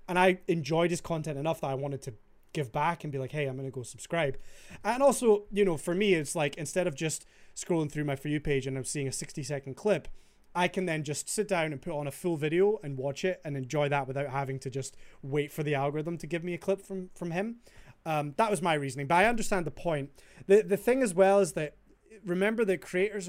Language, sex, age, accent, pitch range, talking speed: English, male, 20-39, British, 140-180 Hz, 255 wpm